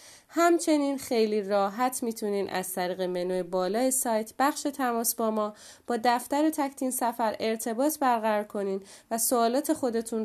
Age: 20-39